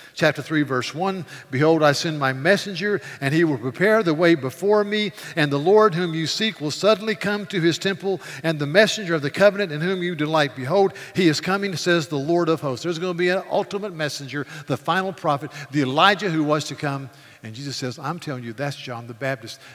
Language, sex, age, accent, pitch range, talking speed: English, male, 50-69, American, 135-175 Hz, 225 wpm